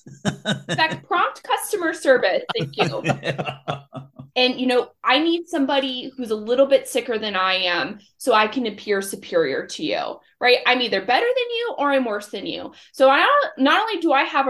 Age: 20-39